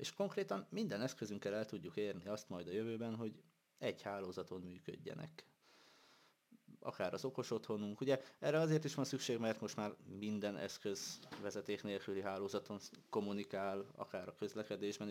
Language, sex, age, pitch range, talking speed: Hungarian, male, 20-39, 95-110 Hz, 145 wpm